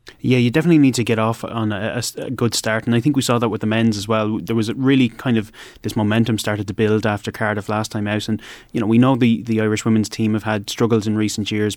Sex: male